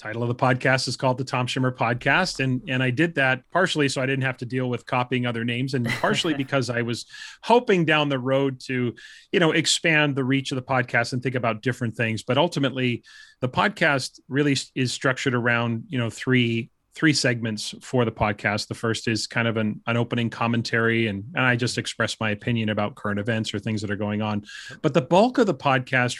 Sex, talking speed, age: male, 220 wpm, 30-49